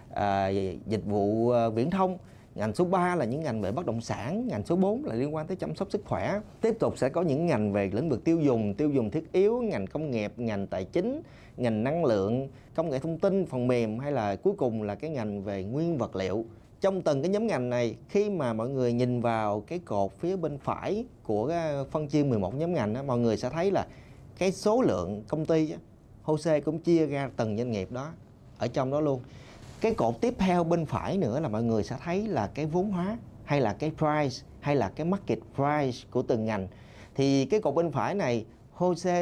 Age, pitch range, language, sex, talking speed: 20-39, 115-170 Hz, Vietnamese, male, 225 wpm